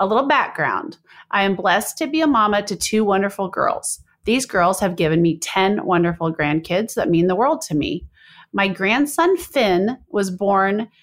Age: 30-49